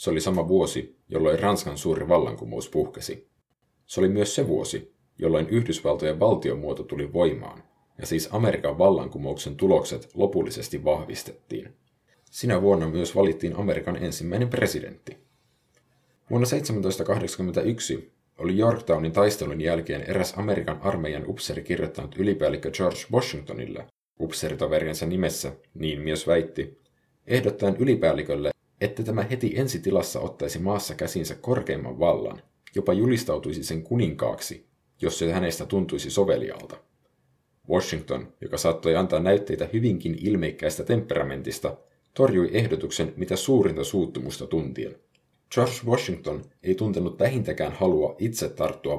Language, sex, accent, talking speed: Finnish, male, native, 115 wpm